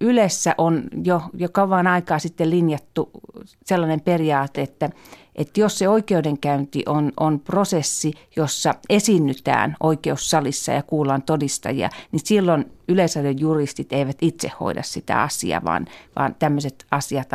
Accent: native